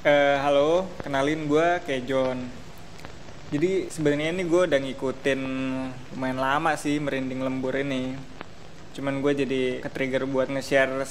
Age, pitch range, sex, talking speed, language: 20-39, 130-150 Hz, male, 130 wpm, Indonesian